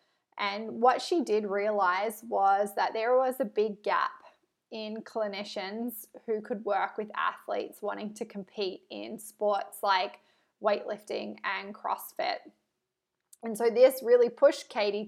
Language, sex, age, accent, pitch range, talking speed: English, female, 20-39, Australian, 210-260 Hz, 135 wpm